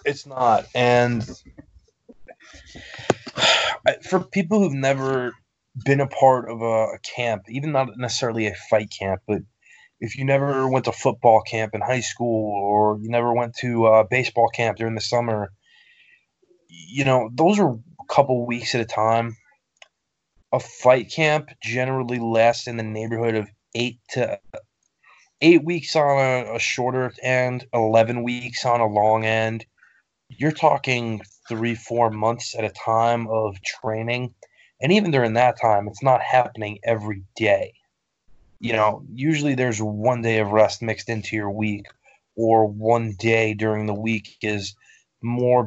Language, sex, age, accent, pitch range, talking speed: English, male, 20-39, American, 110-125 Hz, 150 wpm